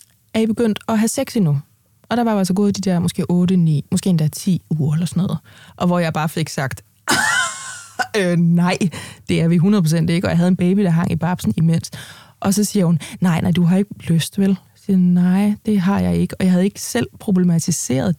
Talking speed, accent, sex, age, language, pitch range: 230 wpm, native, female, 20-39, Danish, 165-200 Hz